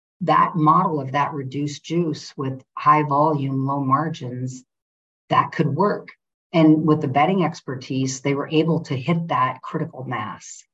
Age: 50-69